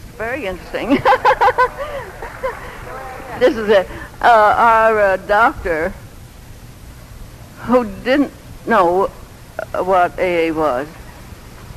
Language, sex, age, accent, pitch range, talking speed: English, female, 70-89, American, 180-235 Hz, 75 wpm